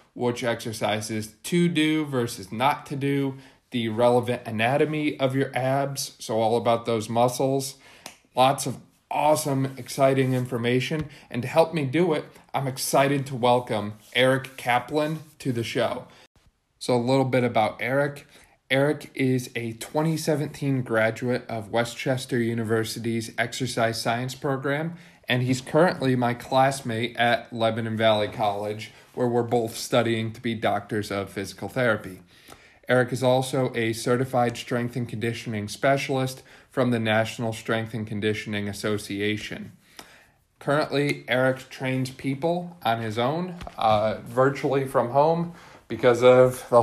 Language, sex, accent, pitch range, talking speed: English, male, American, 115-135 Hz, 135 wpm